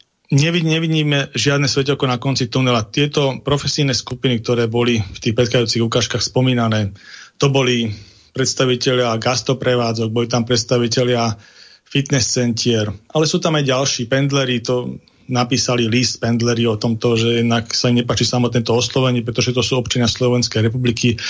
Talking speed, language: 145 wpm, Slovak